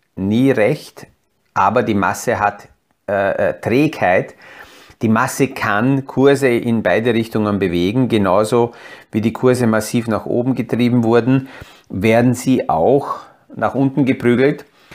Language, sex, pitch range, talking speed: German, male, 110-135 Hz, 125 wpm